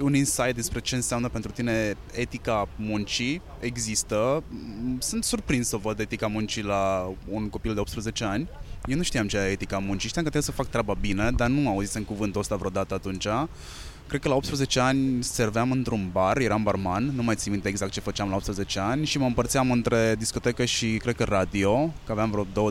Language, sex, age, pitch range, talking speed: Romanian, male, 20-39, 100-130 Hz, 200 wpm